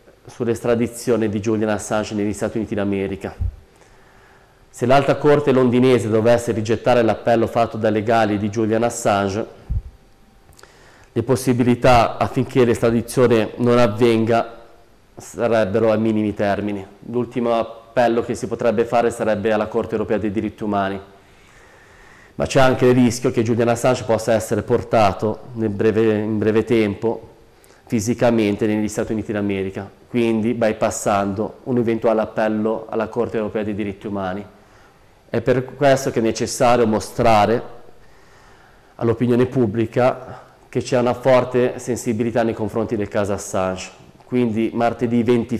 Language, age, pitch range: Italian, 30-49, 105-120 Hz